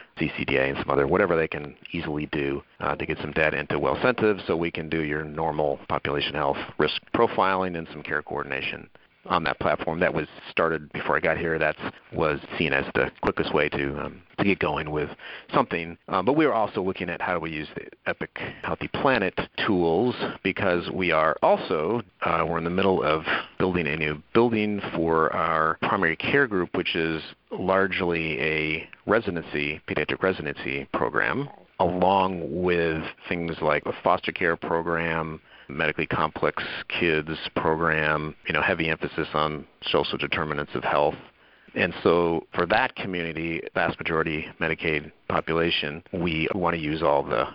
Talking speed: 170 wpm